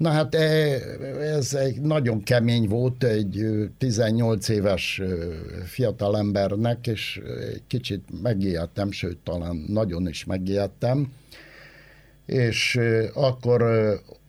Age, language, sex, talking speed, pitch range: 60-79, Hungarian, male, 90 wpm, 105-135 Hz